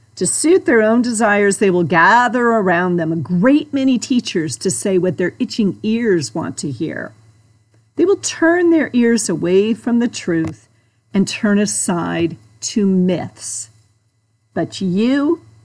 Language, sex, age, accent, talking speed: English, female, 50-69, American, 150 wpm